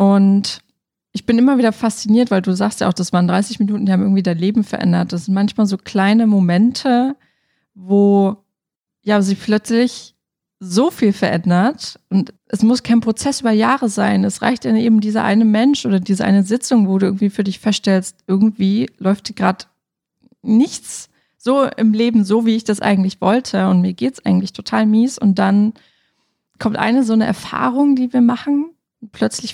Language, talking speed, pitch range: German, 180 wpm, 195-225 Hz